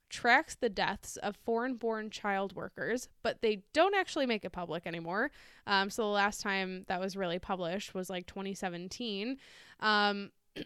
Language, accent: English, American